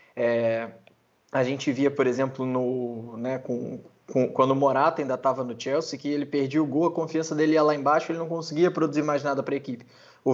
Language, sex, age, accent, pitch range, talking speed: Portuguese, male, 20-39, Brazilian, 140-180 Hz, 220 wpm